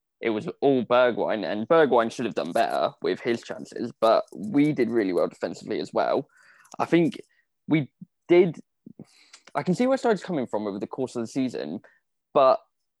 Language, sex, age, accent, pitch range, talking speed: English, male, 20-39, British, 115-160 Hz, 180 wpm